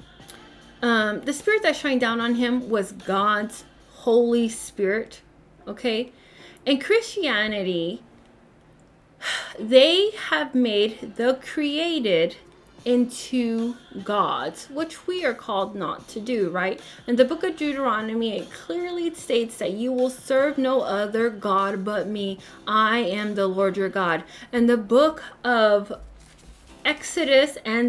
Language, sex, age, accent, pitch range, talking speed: English, female, 20-39, American, 210-295 Hz, 125 wpm